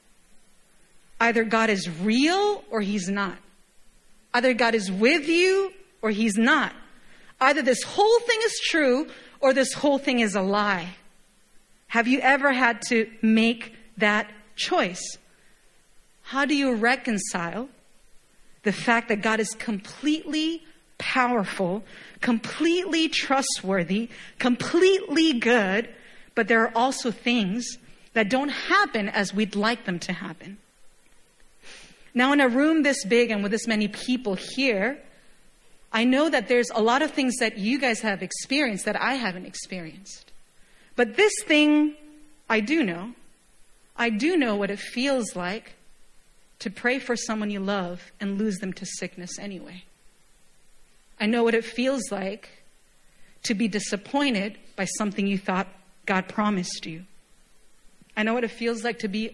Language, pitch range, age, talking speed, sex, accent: English, 200-260 Hz, 40-59, 145 wpm, female, American